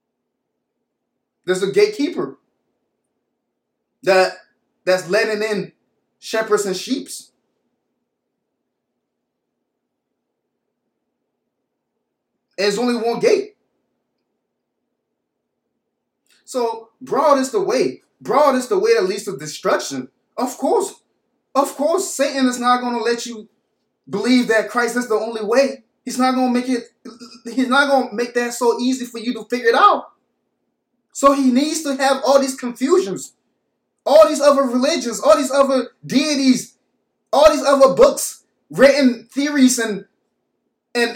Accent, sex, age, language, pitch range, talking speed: American, male, 20-39, English, 225-275 Hz, 125 wpm